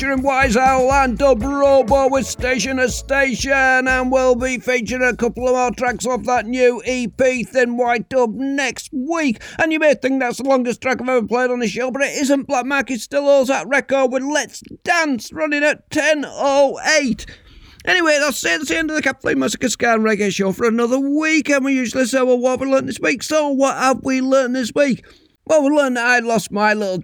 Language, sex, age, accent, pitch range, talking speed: English, male, 50-69, British, 215-270 Hz, 210 wpm